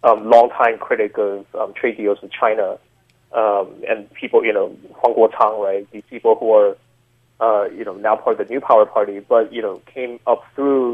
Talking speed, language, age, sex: 210 wpm, English, 20-39, male